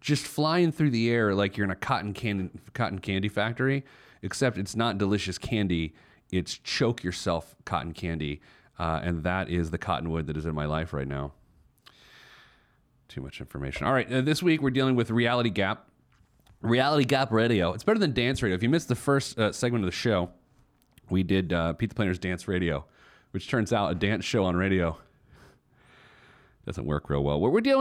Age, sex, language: 30-49, male, English